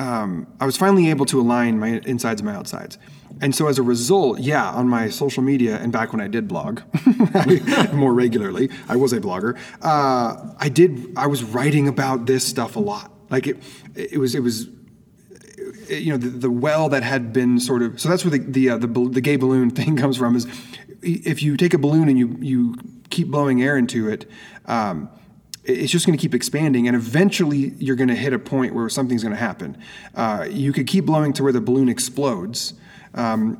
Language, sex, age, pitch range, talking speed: English, male, 30-49, 125-160 Hz, 215 wpm